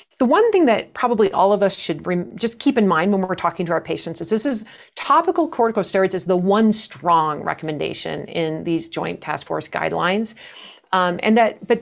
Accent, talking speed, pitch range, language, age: American, 200 wpm, 170-220 Hz, English, 40-59